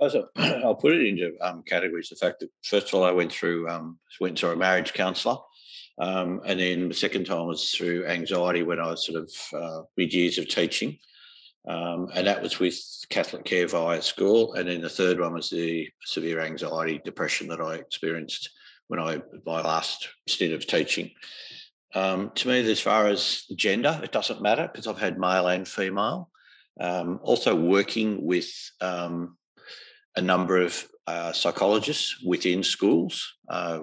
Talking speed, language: 175 wpm, English